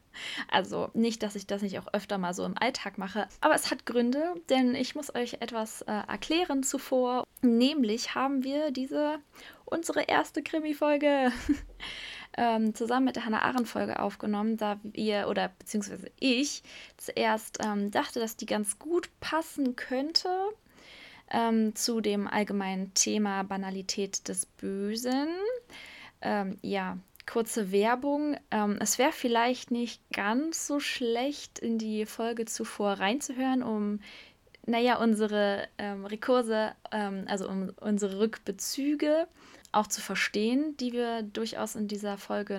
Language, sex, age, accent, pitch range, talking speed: German, female, 20-39, German, 210-275 Hz, 135 wpm